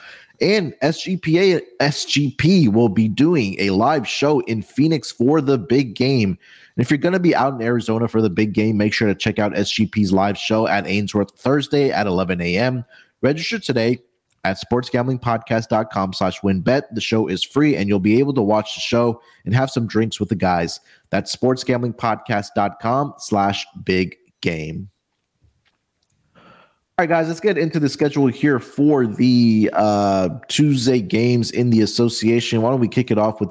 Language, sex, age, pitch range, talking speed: English, male, 30-49, 105-130 Hz, 170 wpm